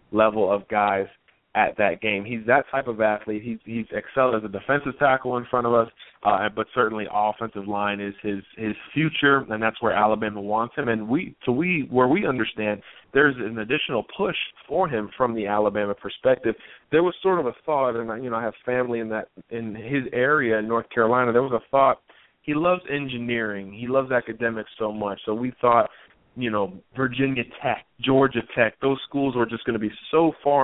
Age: 30-49